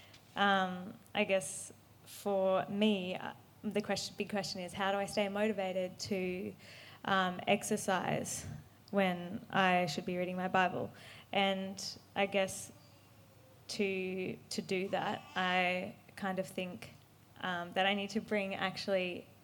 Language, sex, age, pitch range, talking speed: English, female, 20-39, 185-205 Hz, 135 wpm